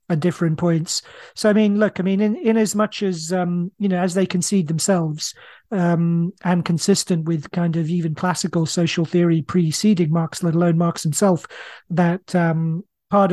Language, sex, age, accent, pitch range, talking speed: English, male, 40-59, British, 170-205 Hz, 175 wpm